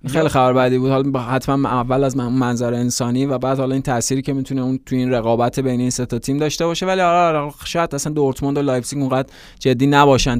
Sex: male